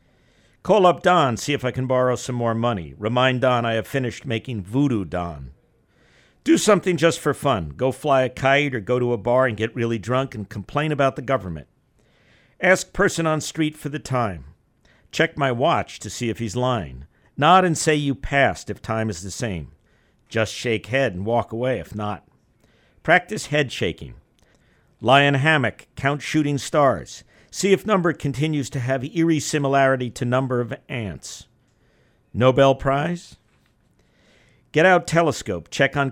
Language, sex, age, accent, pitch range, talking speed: English, male, 50-69, American, 110-145 Hz, 170 wpm